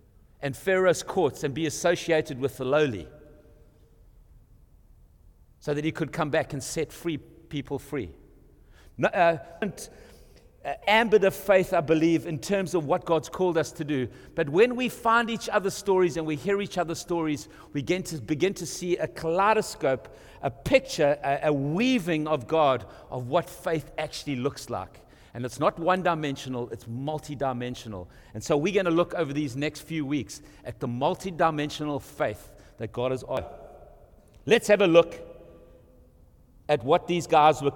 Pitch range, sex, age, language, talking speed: 125-175 Hz, male, 60-79, English, 160 wpm